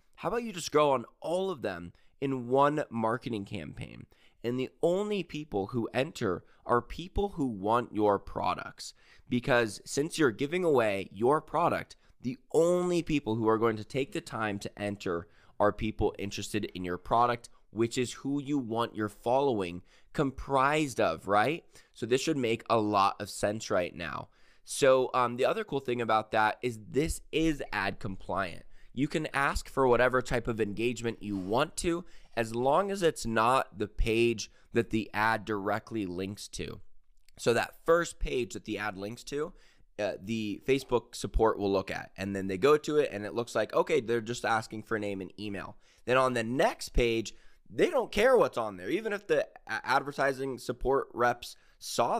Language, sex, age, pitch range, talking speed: English, male, 20-39, 105-135 Hz, 185 wpm